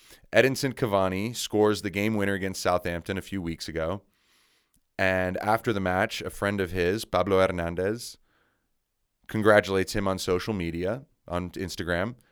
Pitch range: 90-115 Hz